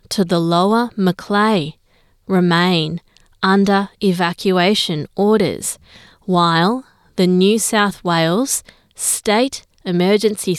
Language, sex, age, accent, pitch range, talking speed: English, female, 30-49, Australian, 175-215 Hz, 85 wpm